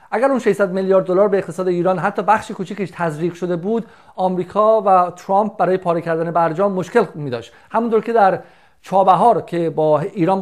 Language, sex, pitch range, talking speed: Persian, male, 185-220 Hz, 180 wpm